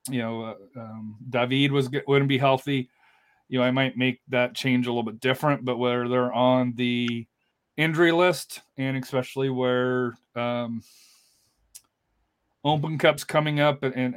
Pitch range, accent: 120-140 Hz, American